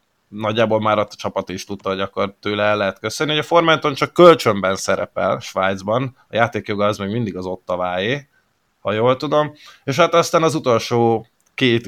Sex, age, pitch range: male, 20-39, 100-120 Hz